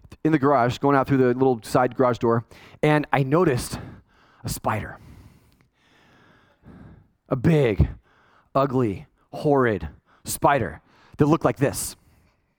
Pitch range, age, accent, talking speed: 140-210 Hz, 30-49, American, 120 wpm